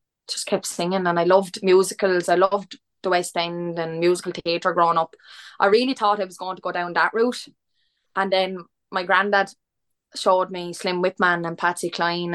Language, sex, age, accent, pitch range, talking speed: English, female, 20-39, Irish, 175-195 Hz, 190 wpm